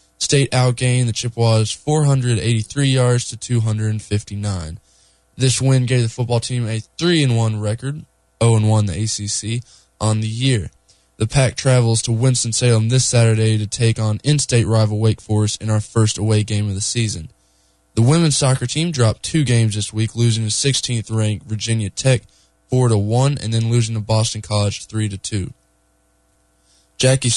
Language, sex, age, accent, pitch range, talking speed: English, male, 10-29, American, 105-125 Hz, 150 wpm